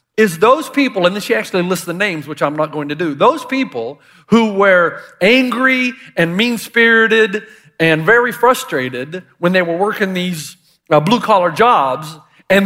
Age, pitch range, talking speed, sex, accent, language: 40-59, 200-265 Hz, 160 wpm, male, American, English